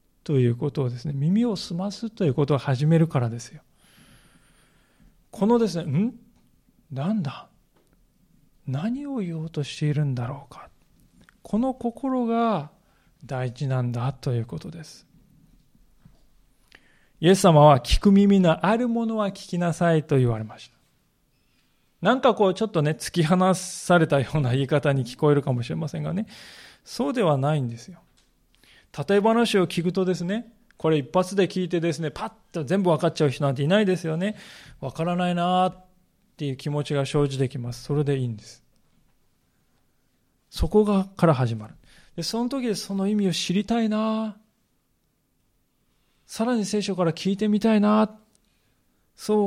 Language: Japanese